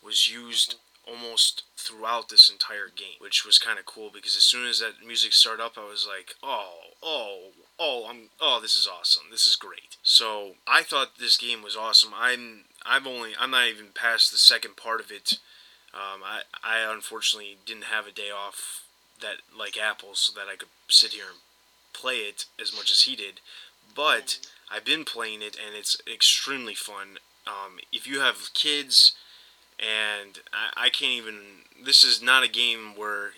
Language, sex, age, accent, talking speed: English, male, 20-39, American, 185 wpm